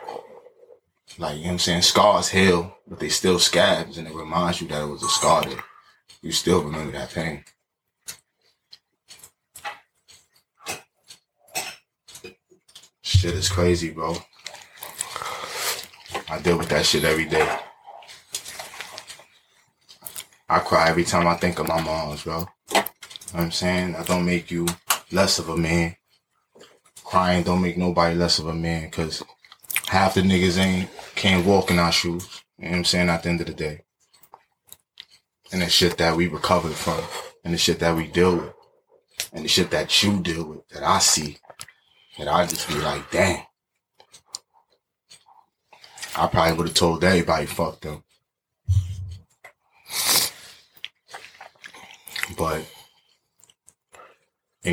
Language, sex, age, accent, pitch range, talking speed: English, male, 20-39, American, 85-95 Hz, 140 wpm